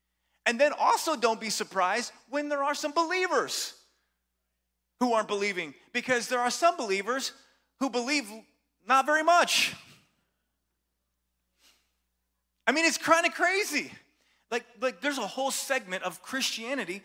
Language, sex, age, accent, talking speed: English, male, 30-49, American, 135 wpm